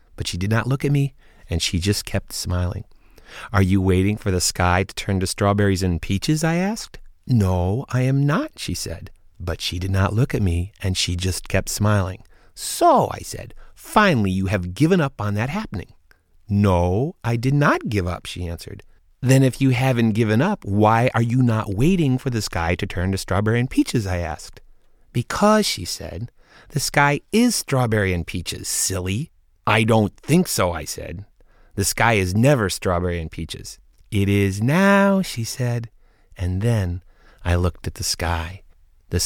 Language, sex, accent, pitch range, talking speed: English, male, American, 90-120 Hz, 185 wpm